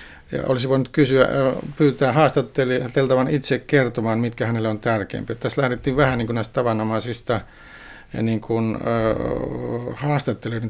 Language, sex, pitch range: Finnish, male, 115-130 Hz